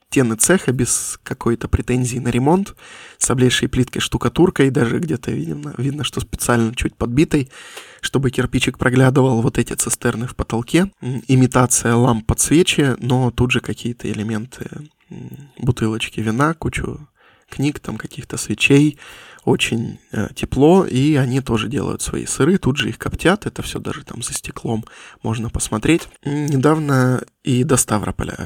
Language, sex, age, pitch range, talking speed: Russian, male, 20-39, 120-145 Hz, 145 wpm